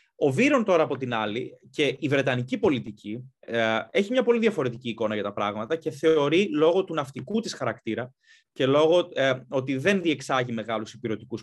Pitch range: 120-175 Hz